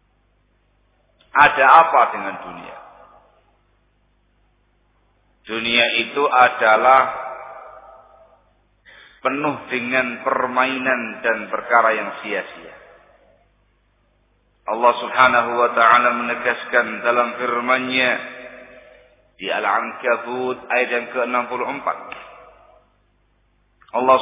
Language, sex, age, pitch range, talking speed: English, male, 50-69, 125-145 Hz, 70 wpm